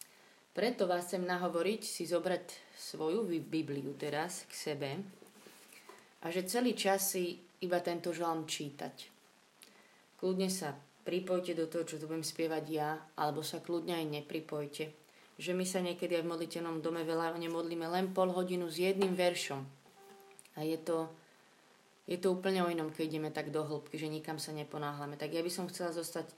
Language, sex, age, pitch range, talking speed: Slovak, female, 30-49, 155-180 Hz, 170 wpm